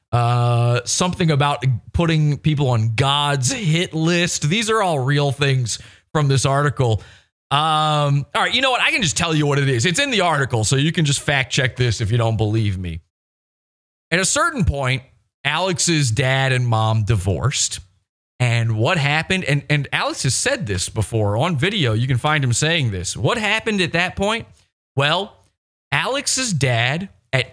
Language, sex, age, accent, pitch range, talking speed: English, male, 30-49, American, 120-170 Hz, 180 wpm